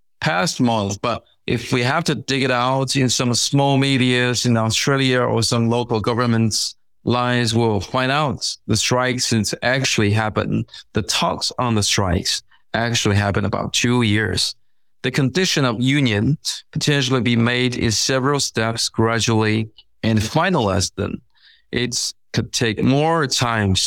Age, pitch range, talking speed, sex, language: 30-49, 105-125 Hz, 145 wpm, male, English